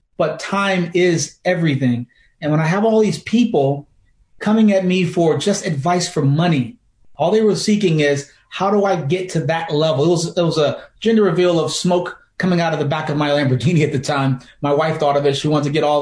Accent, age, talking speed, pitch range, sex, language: American, 30-49, 230 wpm, 145-185 Hz, male, English